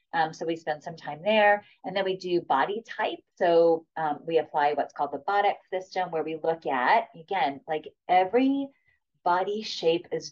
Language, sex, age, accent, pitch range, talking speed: English, female, 30-49, American, 160-225 Hz, 185 wpm